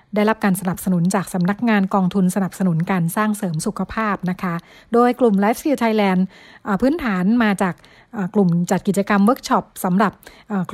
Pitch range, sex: 190-230 Hz, female